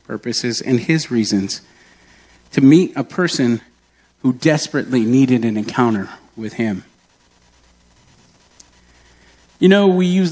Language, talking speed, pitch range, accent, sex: English, 110 wpm, 100-165 Hz, American, male